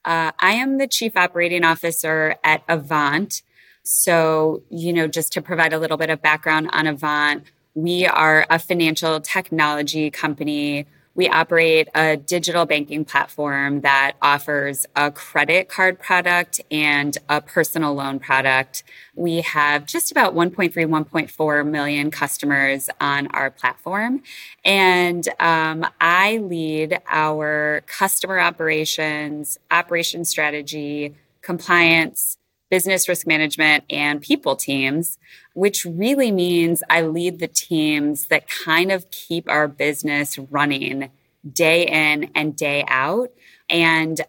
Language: English